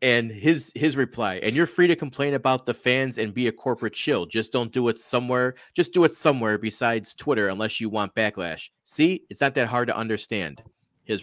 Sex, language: male, English